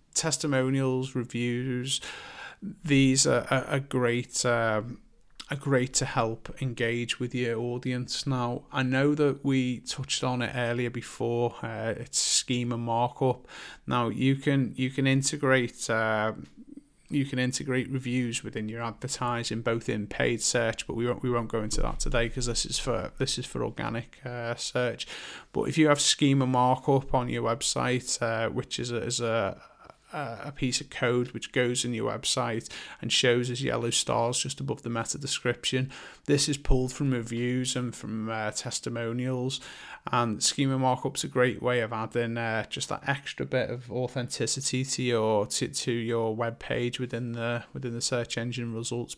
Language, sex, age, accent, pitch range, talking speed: English, male, 30-49, British, 120-130 Hz, 170 wpm